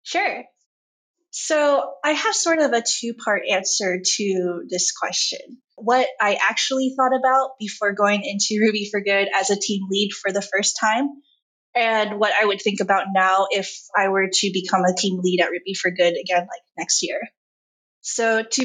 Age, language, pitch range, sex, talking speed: 20-39, English, 190-235 Hz, female, 180 wpm